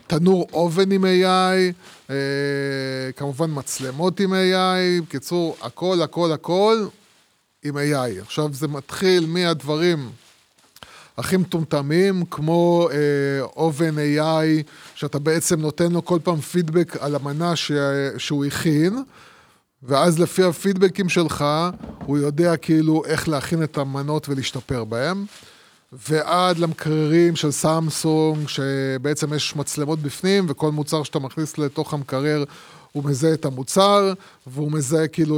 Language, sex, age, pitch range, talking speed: Hebrew, male, 20-39, 140-175 Hz, 120 wpm